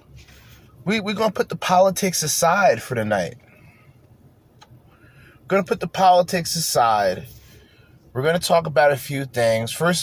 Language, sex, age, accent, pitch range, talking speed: English, male, 20-39, American, 120-160 Hz, 155 wpm